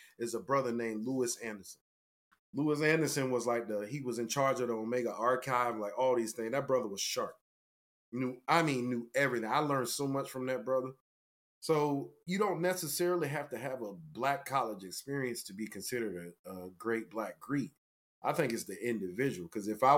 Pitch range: 110-140 Hz